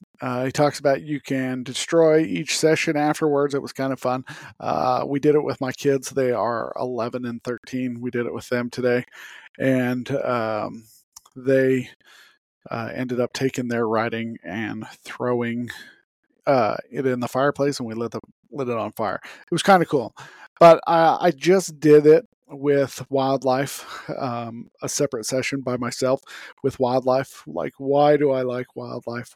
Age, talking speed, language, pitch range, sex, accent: 40-59, 170 wpm, English, 125-145 Hz, male, American